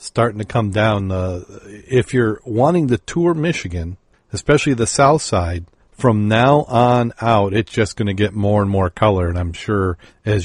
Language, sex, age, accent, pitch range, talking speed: English, male, 40-59, American, 95-115 Hz, 185 wpm